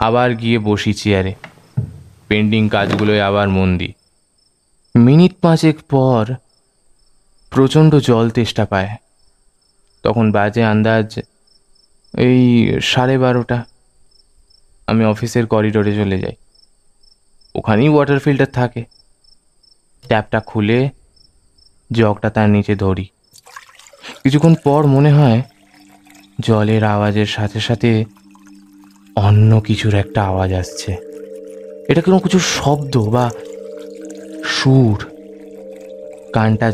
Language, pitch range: Bengali, 100-135 Hz